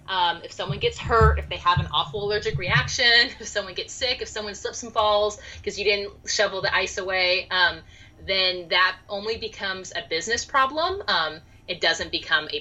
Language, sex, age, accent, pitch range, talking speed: English, female, 30-49, American, 175-230 Hz, 195 wpm